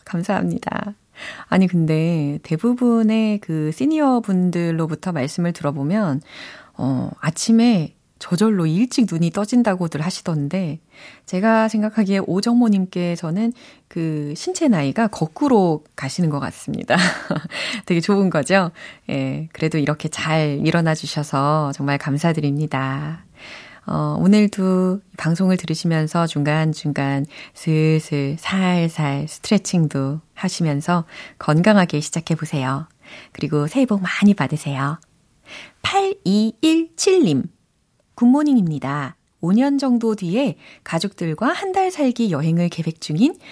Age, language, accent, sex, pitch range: 30-49, Korean, native, female, 150-210 Hz